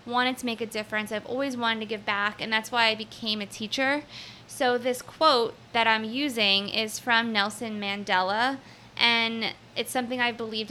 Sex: female